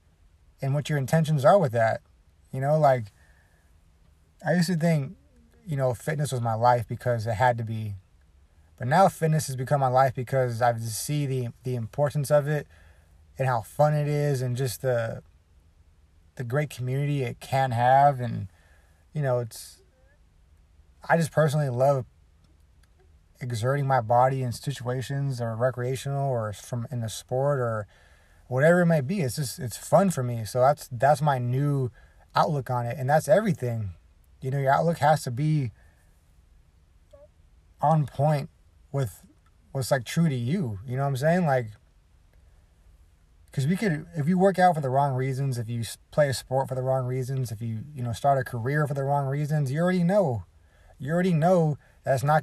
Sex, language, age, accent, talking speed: male, English, 30-49, American, 180 wpm